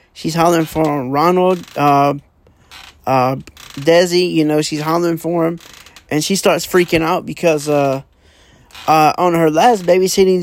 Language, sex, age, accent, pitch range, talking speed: English, male, 20-39, American, 140-180 Hz, 145 wpm